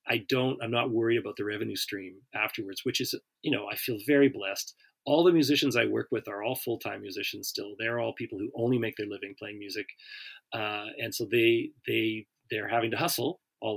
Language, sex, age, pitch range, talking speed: English, male, 30-49, 105-140 Hz, 215 wpm